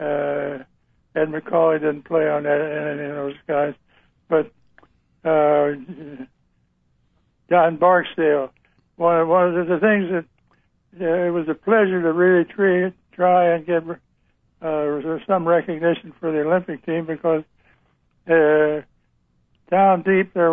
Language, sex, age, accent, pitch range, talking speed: English, male, 60-79, American, 150-170 Hz, 130 wpm